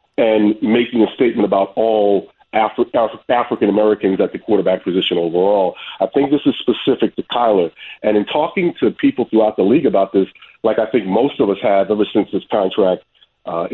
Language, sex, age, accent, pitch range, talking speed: English, male, 40-59, American, 105-140 Hz, 190 wpm